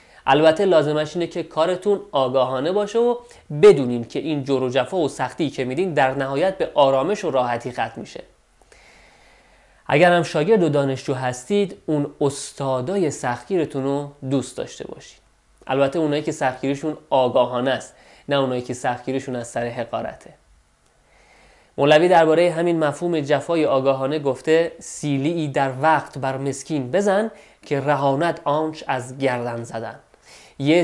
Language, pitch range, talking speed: Persian, 135-165 Hz, 135 wpm